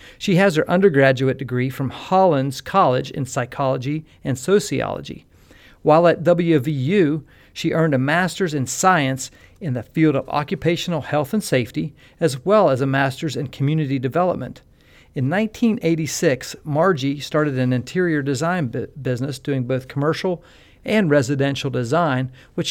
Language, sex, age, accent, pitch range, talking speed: English, male, 50-69, American, 130-165 Hz, 135 wpm